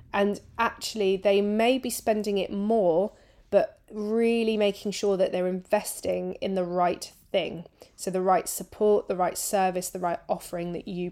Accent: British